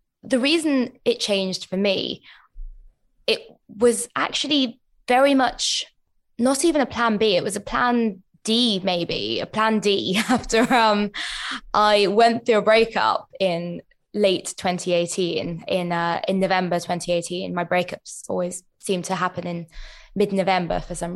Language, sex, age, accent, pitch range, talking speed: English, female, 20-39, British, 180-240 Hz, 140 wpm